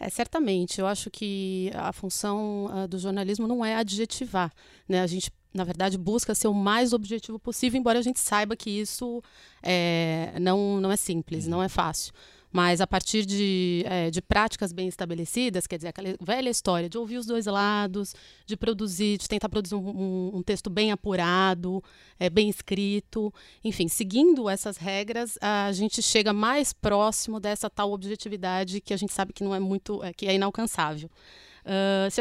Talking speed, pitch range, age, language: 175 wpm, 185-220 Hz, 30-49, Portuguese